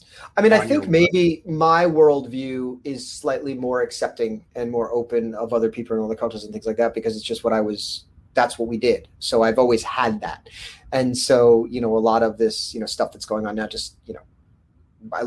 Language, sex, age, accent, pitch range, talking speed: English, male, 30-49, American, 115-155 Hz, 230 wpm